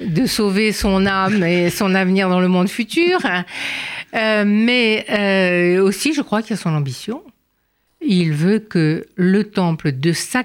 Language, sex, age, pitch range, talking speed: French, female, 60-79, 170-220 Hz, 165 wpm